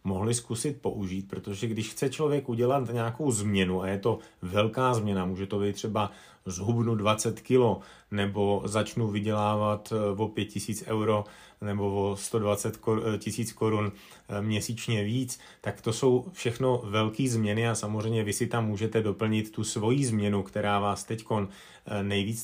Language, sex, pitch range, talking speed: Slovak, male, 105-120 Hz, 145 wpm